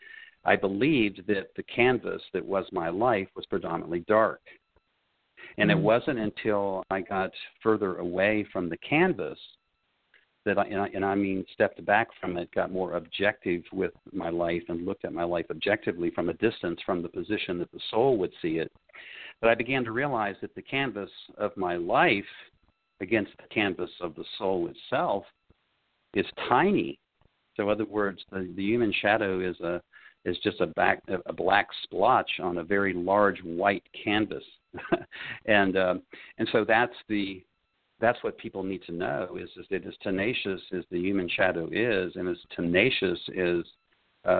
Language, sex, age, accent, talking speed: English, male, 50-69, American, 175 wpm